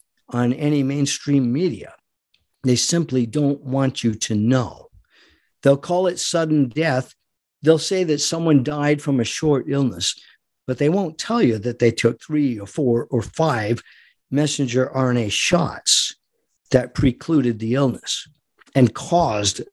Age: 50-69